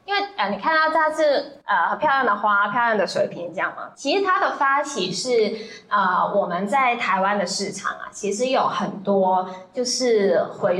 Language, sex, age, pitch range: Chinese, female, 10-29, 205-300 Hz